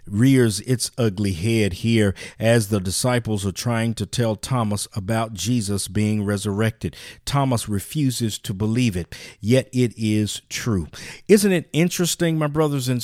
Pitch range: 110-135 Hz